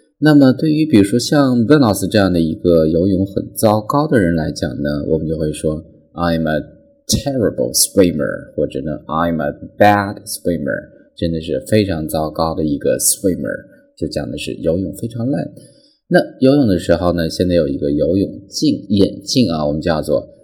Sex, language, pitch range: male, Chinese, 80-135 Hz